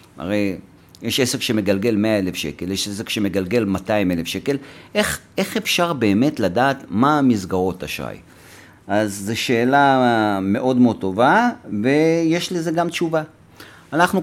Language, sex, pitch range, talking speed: Hebrew, male, 110-160 Hz, 125 wpm